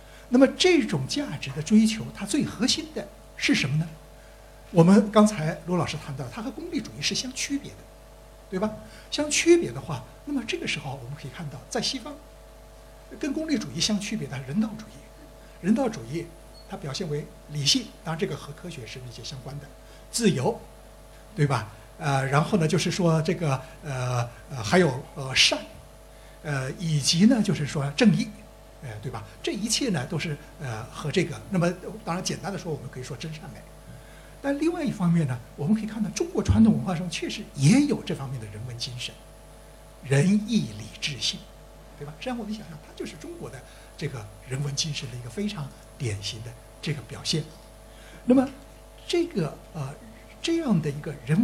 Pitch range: 130-210 Hz